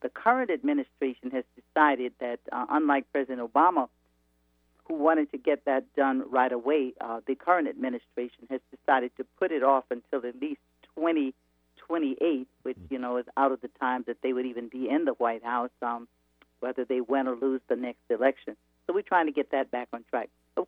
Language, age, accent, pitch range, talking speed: English, 50-69, American, 125-155 Hz, 195 wpm